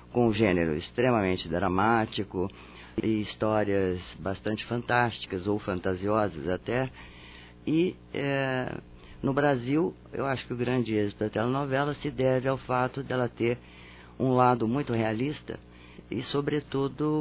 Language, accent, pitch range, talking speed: Portuguese, Brazilian, 95-125 Hz, 125 wpm